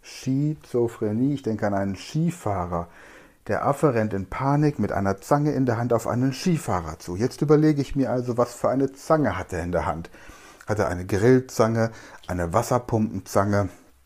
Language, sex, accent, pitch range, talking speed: German, male, German, 95-135 Hz, 175 wpm